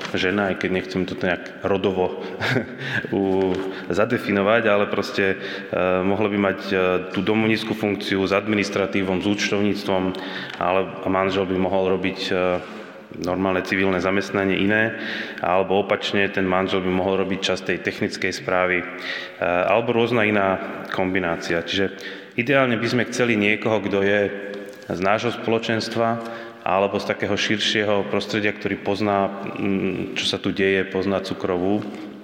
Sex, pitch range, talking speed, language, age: male, 95-105 Hz, 135 wpm, Slovak, 30-49